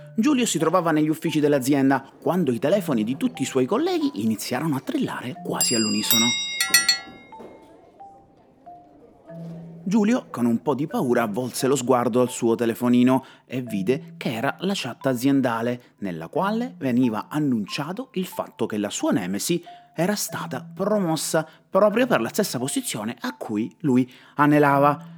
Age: 30-49